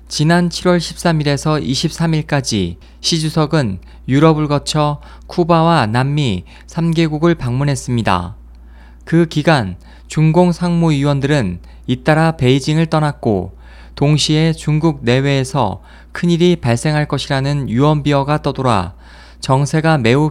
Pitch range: 105-160 Hz